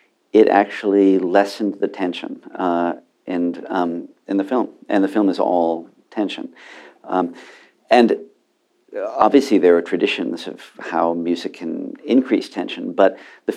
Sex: male